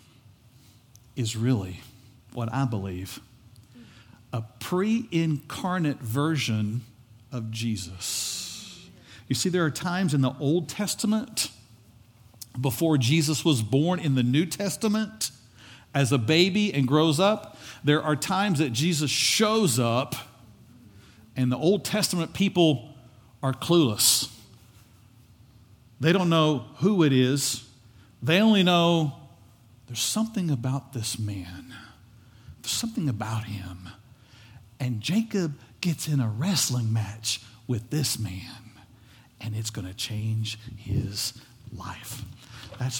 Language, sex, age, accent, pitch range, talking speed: English, male, 50-69, American, 115-165 Hz, 115 wpm